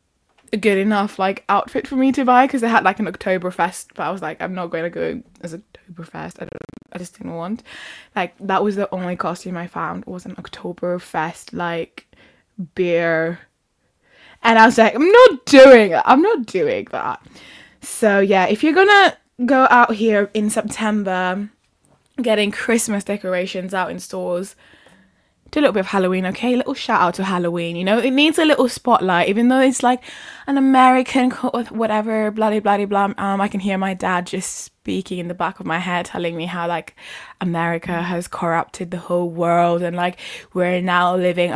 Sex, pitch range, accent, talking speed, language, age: female, 175-245 Hz, British, 185 wpm, English, 10-29